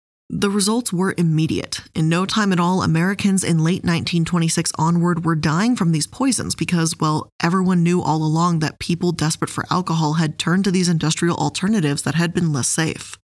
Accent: American